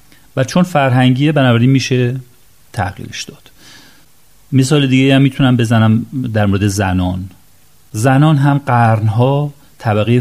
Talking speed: 110 wpm